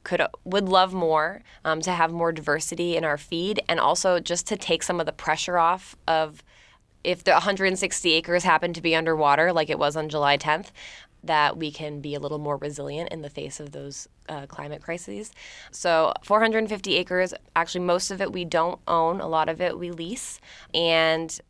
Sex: female